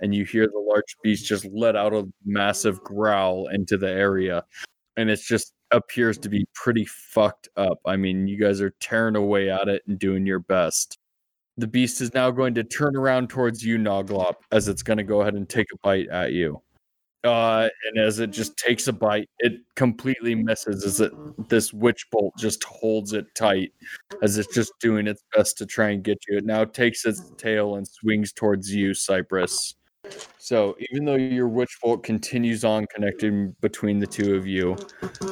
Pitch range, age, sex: 100-120 Hz, 20-39, male